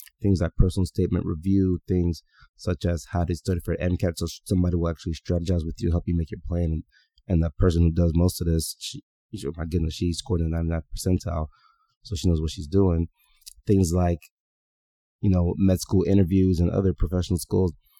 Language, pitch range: English, 85-95 Hz